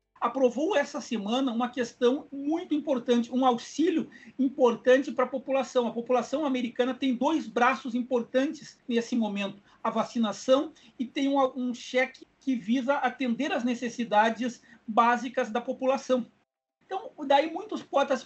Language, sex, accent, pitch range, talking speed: Portuguese, male, Brazilian, 230-275 Hz, 135 wpm